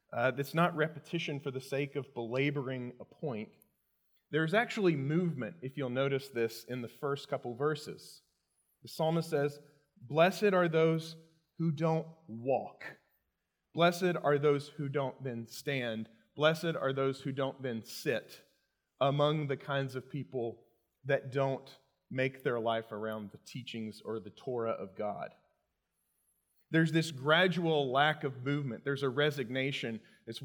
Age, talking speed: 30-49, 145 wpm